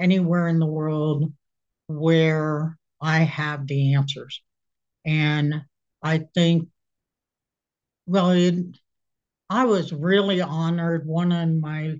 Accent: American